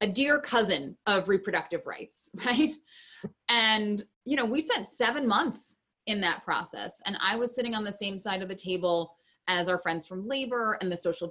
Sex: female